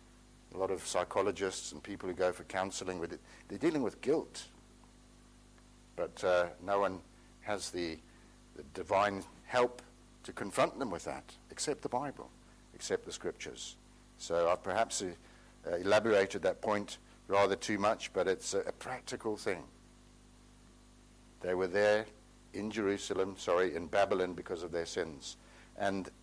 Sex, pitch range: male, 90-105 Hz